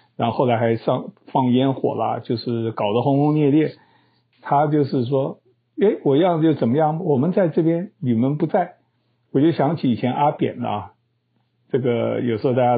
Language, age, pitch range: Chinese, 60-79, 120-150 Hz